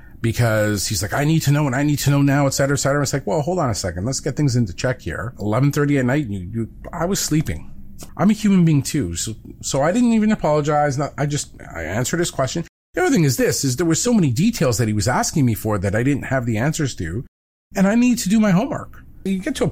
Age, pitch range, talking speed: 40-59, 115-160 Hz, 270 wpm